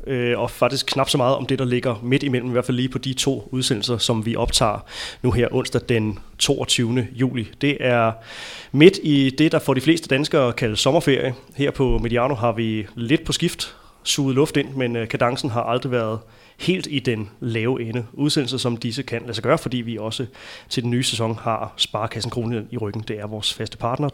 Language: Danish